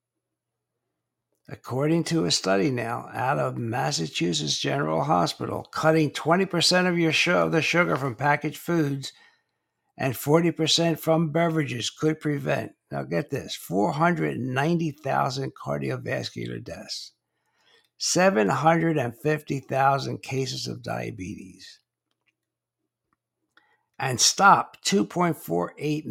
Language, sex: English, male